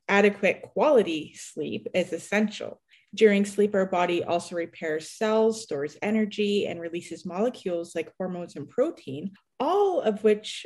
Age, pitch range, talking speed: 30-49, 180-225 Hz, 135 wpm